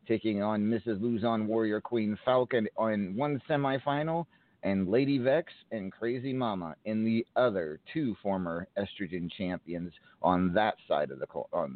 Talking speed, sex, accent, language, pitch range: 150 wpm, male, American, English, 95-115 Hz